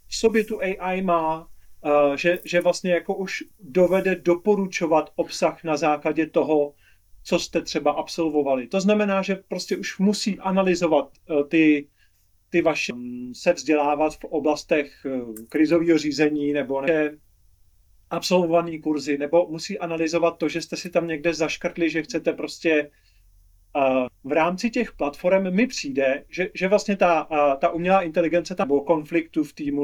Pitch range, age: 150-180 Hz, 40-59